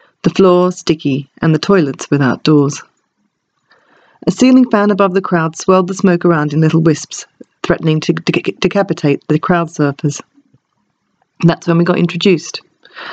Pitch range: 155-190 Hz